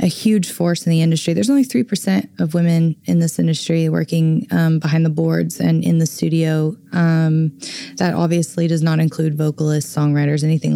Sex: female